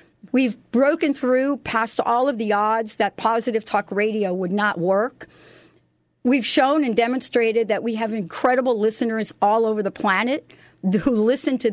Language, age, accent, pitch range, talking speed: English, 50-69, American, 205-260 Hz, 160 wpm